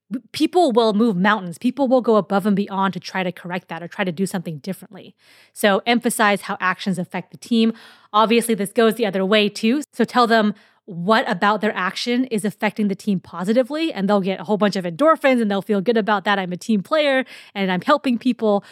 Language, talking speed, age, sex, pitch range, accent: English, 220 wpm, 20-39, female, 190-240 Hz, American